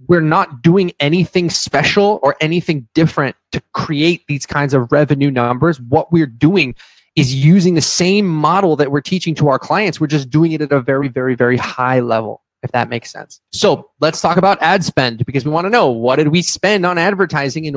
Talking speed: 210 wpm